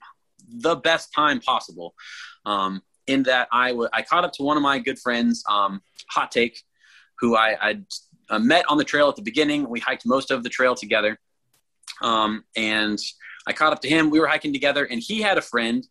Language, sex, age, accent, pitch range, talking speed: English, male, 30-49, American, 110-160 Hz, 205 wpm